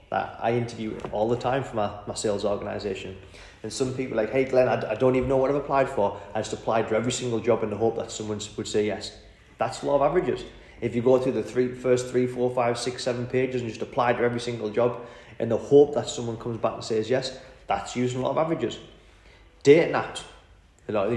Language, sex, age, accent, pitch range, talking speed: English, male, 20-39, British, 115-135 Hz, 250 wpm